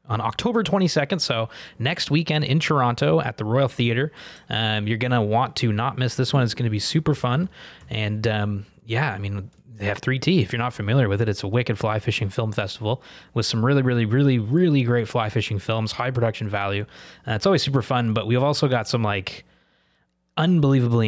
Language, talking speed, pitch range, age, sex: English, 210 wpm, 105-130 Hz, 20-39, male